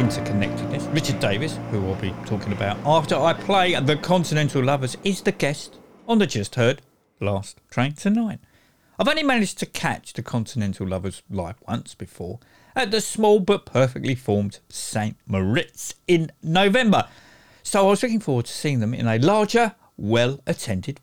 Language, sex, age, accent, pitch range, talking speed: English, male, 50-69, British, 120-190 Hz, 165 wpm